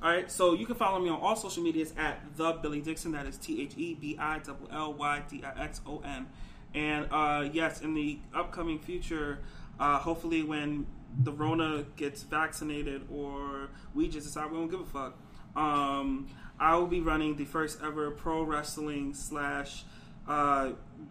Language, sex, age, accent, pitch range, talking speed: English, male, 20-39, American, 145-165 Hz, 150 wpm